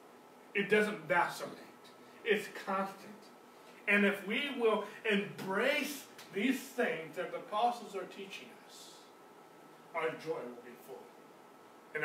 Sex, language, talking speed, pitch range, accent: male, English, 120 wpm, 175-215 Hz, American